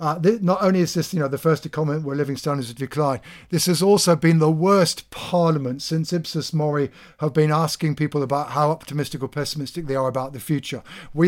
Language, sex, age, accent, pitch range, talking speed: English, male, 50-69, British, 140-165 Hz, 220 wpm